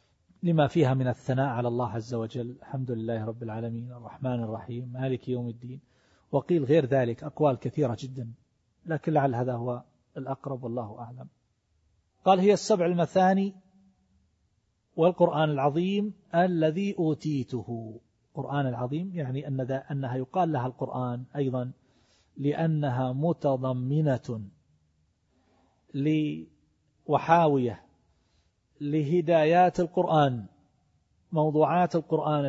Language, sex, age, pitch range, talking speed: Arabic, male, 40-59, 120-155 Hz, 100 wpm